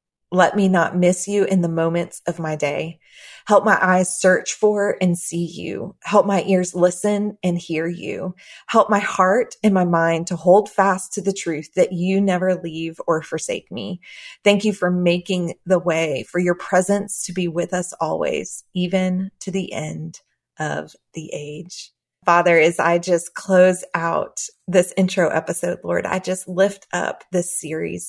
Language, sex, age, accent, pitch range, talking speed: English, female, 20-39, American, 175-195 Hz, 175 wpm